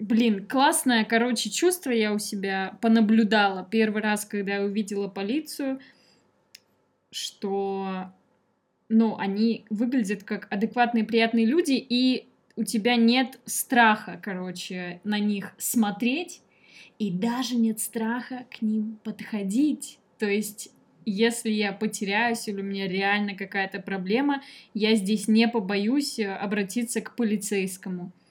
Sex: female